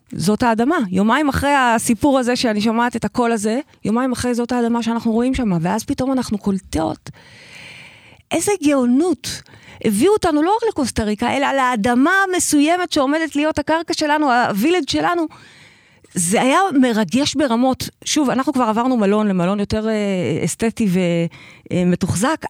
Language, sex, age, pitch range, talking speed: Hebrew, female, 30-49, 210-295 Hz, 135 wpm